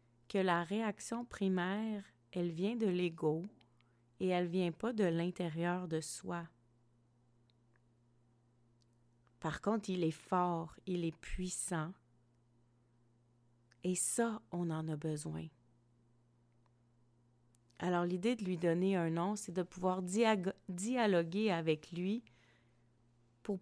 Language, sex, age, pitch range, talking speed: French, female, 30-49, 120-195 Hz, 115 wpm